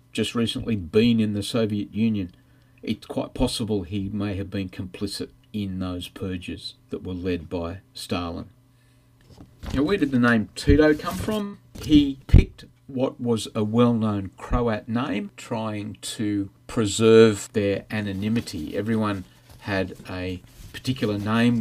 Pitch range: 100-125 Hz